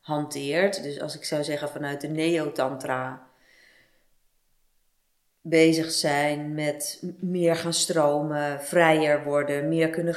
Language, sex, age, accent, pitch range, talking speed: Dutch, female, 30-49, Dutch, 145-170 Hz, 110 wpm